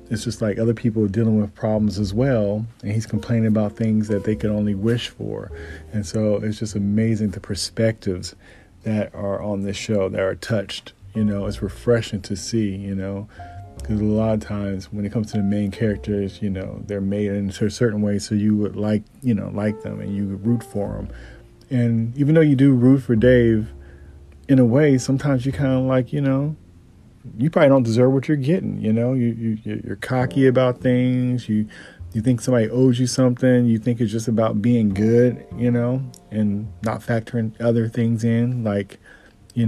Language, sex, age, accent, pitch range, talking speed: English, male, 40-59, American, 100-120 Hz, 205 wpm